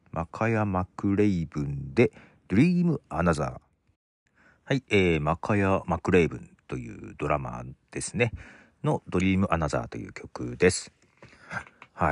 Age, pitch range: 50-69, 80-135 Hz